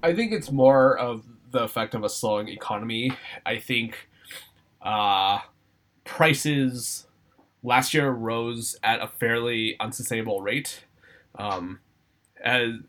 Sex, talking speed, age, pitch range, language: male, 115 wpm, 20-39, 105-130 Hz, English